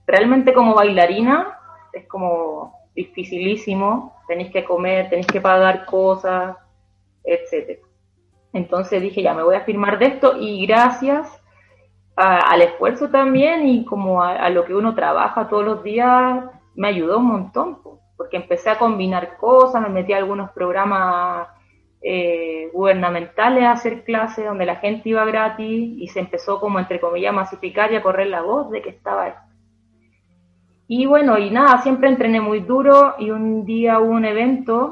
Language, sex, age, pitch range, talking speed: Spanish, female, 20-39, 170-220 Hz, 160 wpm